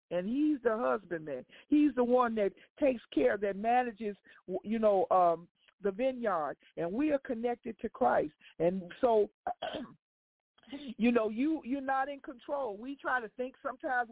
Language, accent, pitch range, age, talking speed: English, American, 220-280 Hz, 50-69, 160 wpm